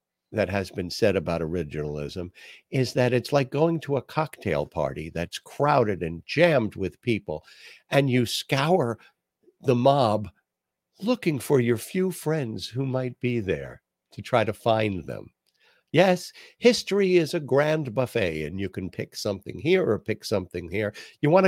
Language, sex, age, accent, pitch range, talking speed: English, male, 60-79, American, 90-145 Hz, 160 wpm